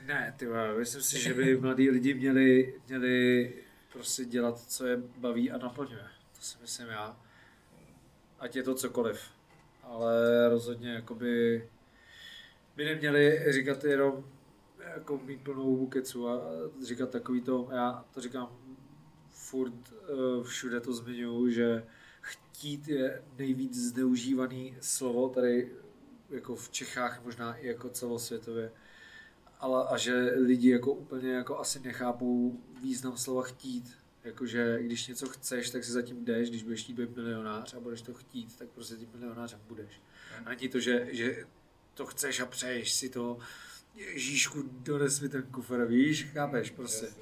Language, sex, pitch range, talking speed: Czech, male, 120-130 Hz, 145 wpm